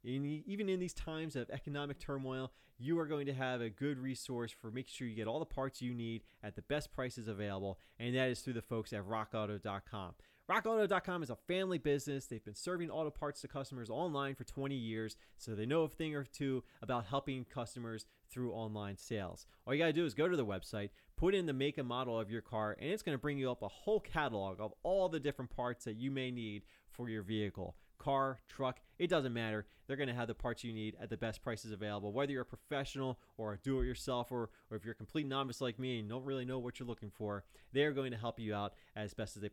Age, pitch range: 30-49, 110-145 Hz